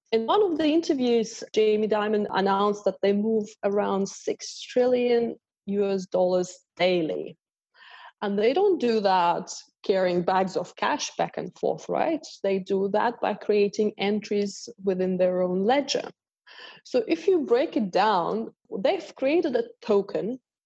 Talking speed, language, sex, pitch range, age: 145 wpm, English, female, 185-240 Hz, 20-39